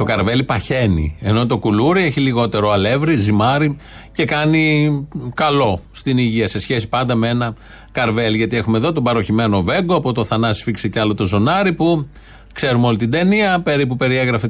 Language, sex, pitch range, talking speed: Greek, male, 110-150 Hz, 175 wpm